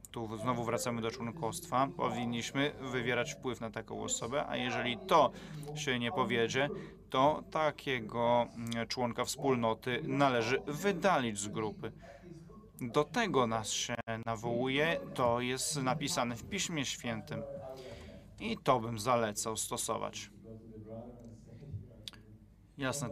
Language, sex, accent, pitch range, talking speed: Polish, male, native, 115-140 Hz, 105 wpm